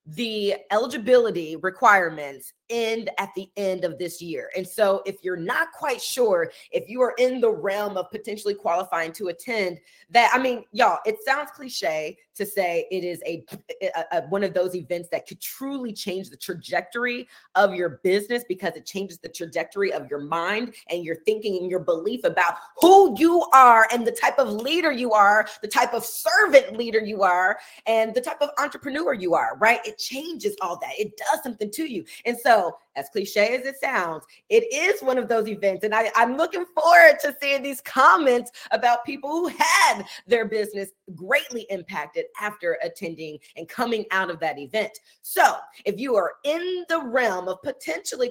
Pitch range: 180-260 Hz